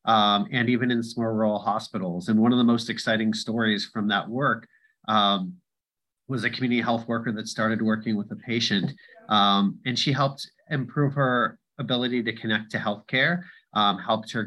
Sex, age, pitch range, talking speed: male, 30-49, 110-130 Hz, 180 wpm